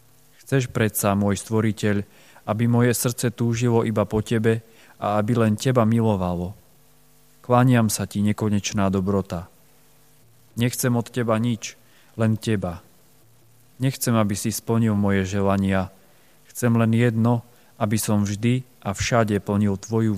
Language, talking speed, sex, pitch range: Slovak, 130 wpm, male, 105-125 Hz